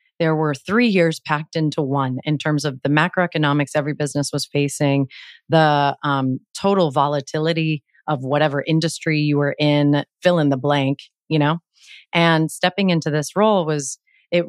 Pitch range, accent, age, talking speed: 145-170 Hz, American, 30-49, 160 wpm